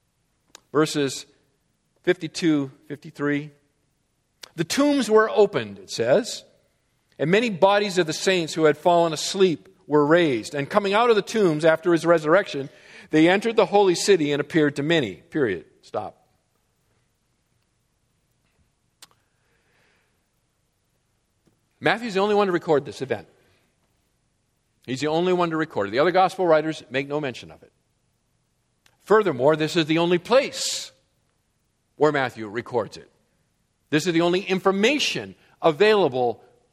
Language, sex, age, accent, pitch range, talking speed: English, male, 50-69, American, 135-175 Hz, 130 wpm